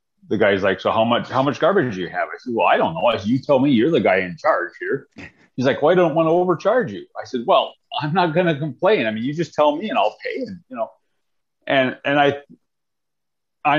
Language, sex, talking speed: English, male, 260 wpm